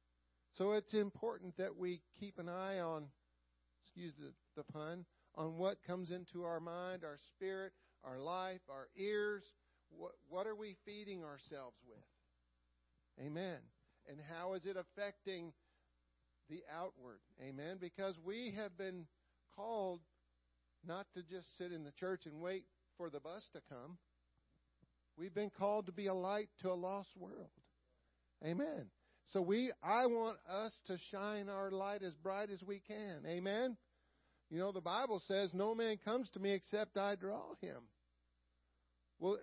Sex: male